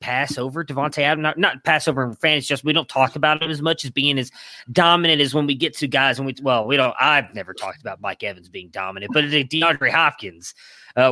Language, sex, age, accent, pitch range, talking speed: English, male, 20-39, American, 130-160 Hz, 235 wpm